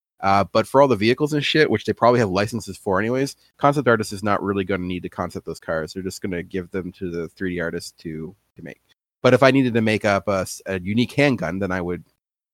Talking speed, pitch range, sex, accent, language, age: 260 wpm, 95-125 Hz, male, American, English, 30-49